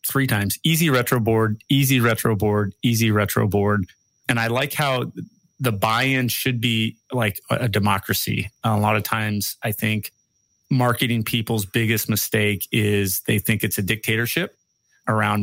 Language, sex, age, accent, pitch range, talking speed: English, male, 30-49, American, 105-120 Hz, 155 wpm